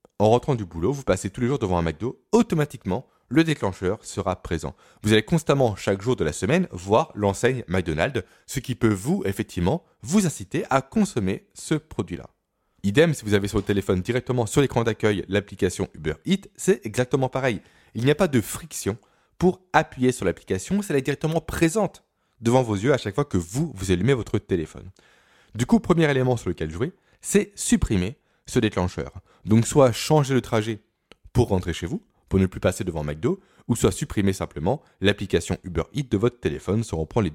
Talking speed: 195 wpm